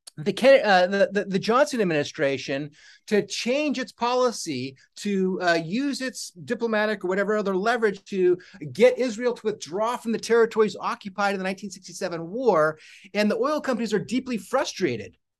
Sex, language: male, English